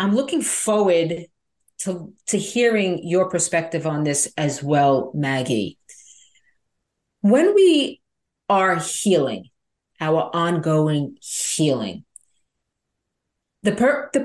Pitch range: 150-210 Hz